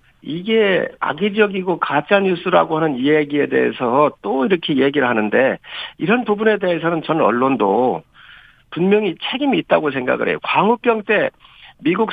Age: 50-69